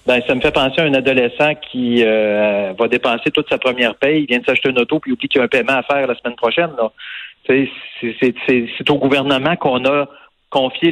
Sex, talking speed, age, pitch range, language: male, 255 wpm, 40-59, 120-155 Hz, French